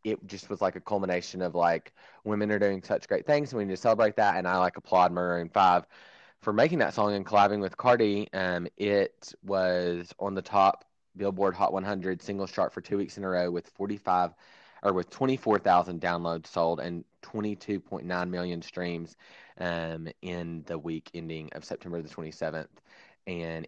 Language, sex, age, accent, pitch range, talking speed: English, male, 20-39, American, 85-100 Hz, 185 wpm